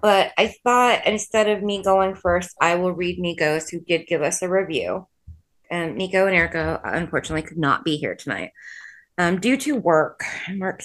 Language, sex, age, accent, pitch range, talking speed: English, female, 20-39, American, 165-200 Hz, 190 wpm